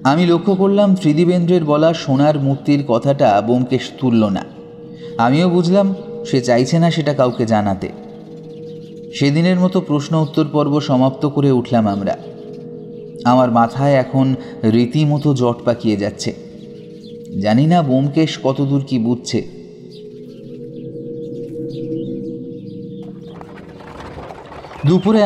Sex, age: male, 30-49